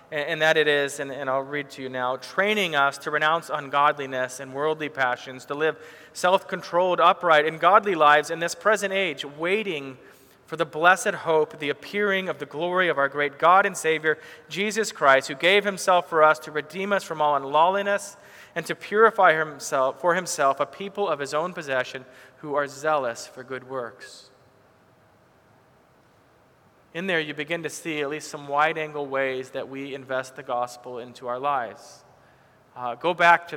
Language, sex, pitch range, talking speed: English, male, 135-170 Hz, 175 wpm